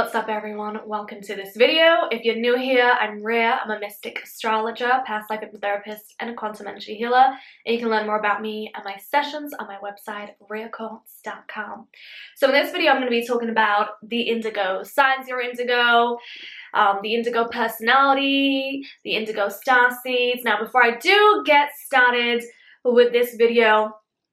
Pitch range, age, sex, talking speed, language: 215-255 Hz, 10-29, female, 180 wpm, English